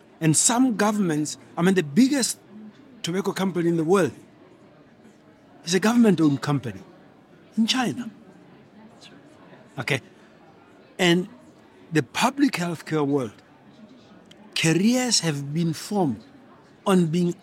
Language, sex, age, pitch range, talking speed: English, male, 60-79, 150-215 Hz, 105 wpm